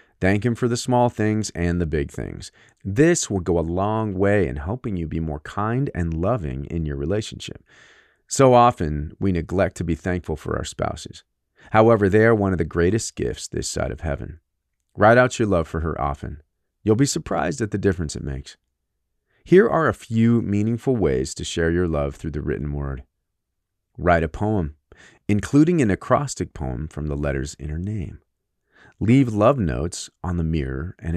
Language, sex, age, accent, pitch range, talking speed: English, male, 40-59, American, 75-105 Hz, 190 wpm